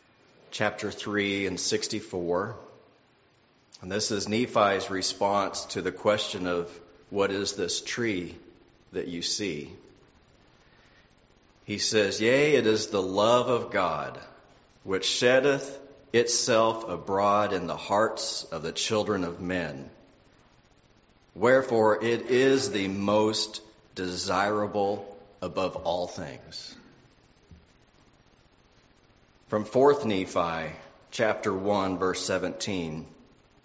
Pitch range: 95-115 Hz